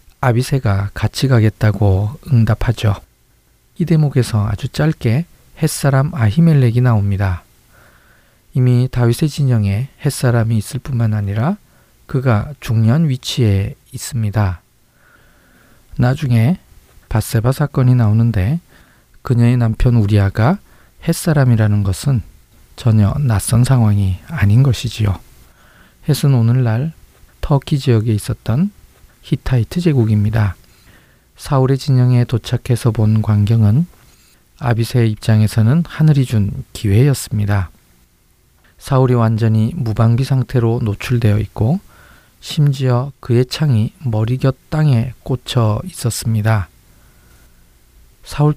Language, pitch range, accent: Korean, 105-130 Hz, native